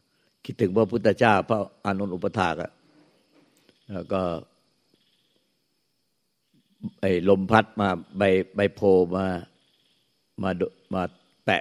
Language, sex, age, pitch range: Thai, male, 60-79, 95-110 Hz